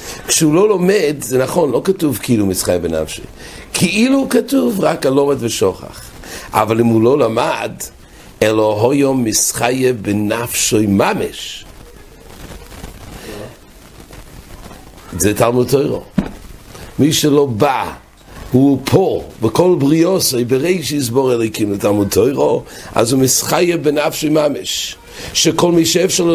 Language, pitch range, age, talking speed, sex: English, 110-155 Hz, 60-79, 75 wpm, male